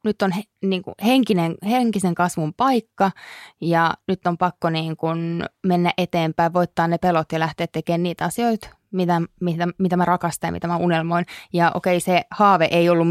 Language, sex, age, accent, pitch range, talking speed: Finnish, female, 20-39, native, 170-190 Hz, 155 wpm